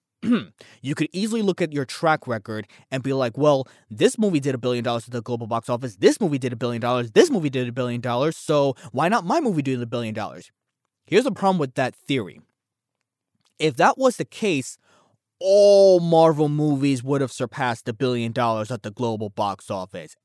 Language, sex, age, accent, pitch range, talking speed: English, male, 20-39, American, 120-170 Hz, 205 wpm